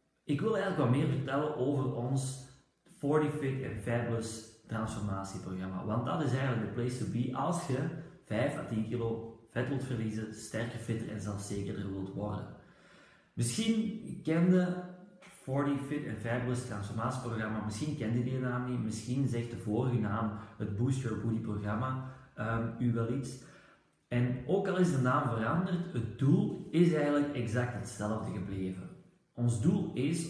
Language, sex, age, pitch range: Dutch, male, 30-49, 115-150 Hz